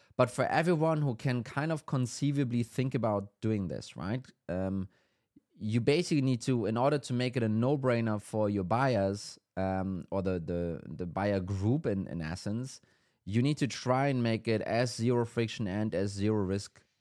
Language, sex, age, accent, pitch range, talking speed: English, male, 20-39, German, 100-130 Hz, 185 wpm